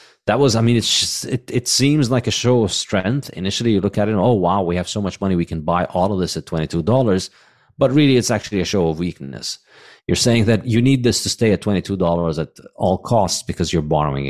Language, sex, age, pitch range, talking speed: English, male, 30-49, 85-110 Hz, 250 wpm